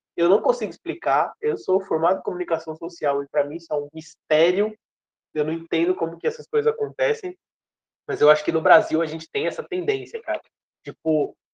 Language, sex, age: Portuguese, male, 20-39